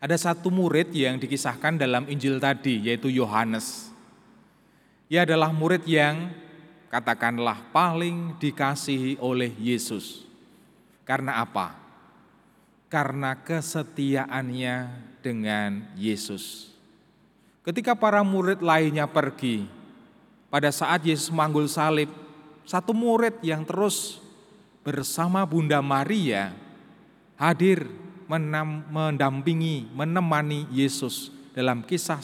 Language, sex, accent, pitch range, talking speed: Indonesian, male, native, 130-170 Hz, 90 wpm